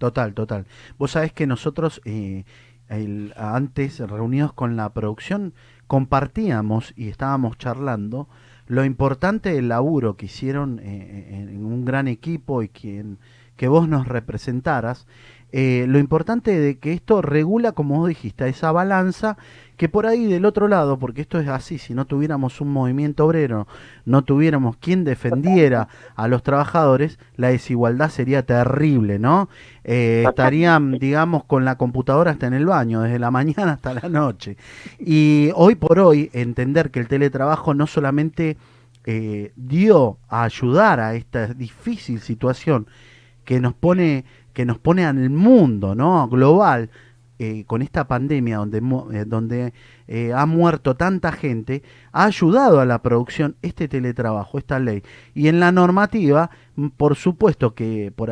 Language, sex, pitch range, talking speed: Spanish, male, 120-155 Hz, 150 wpm